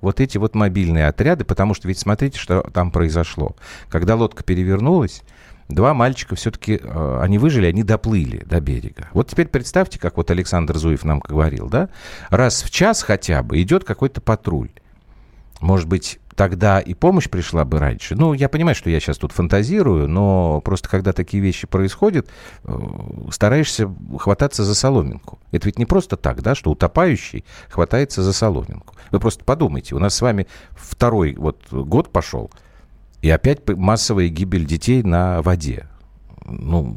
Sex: male